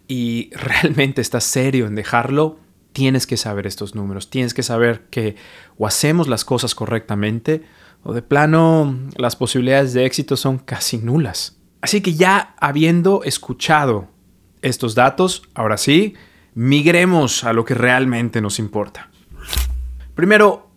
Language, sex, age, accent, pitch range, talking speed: Spanish, male, 30-49, Mexican, 110-145 Hz, 135 wpm